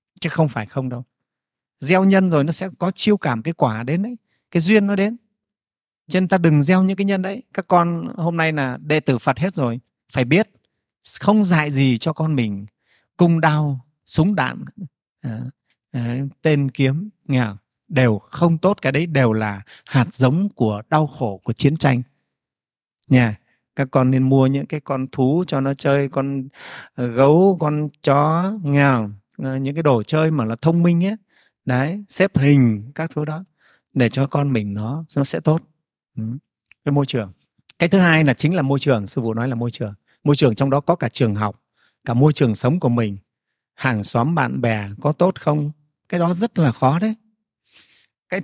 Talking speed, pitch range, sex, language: 195 wpm, 125-170 Hz, male, Vietnamese